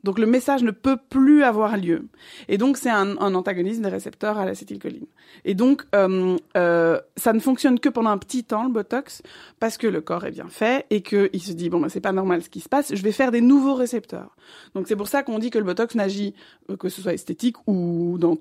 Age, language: 20-39, French